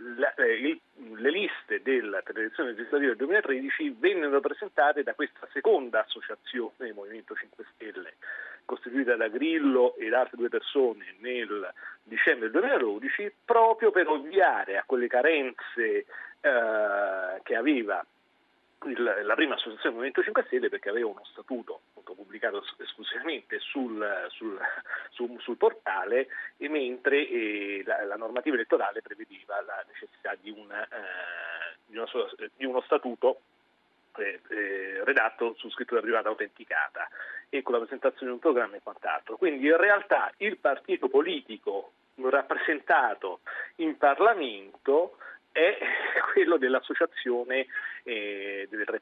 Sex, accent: male, native